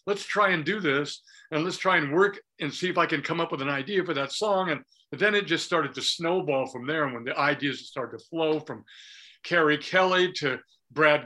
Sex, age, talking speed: male, 50-69, 235 wpm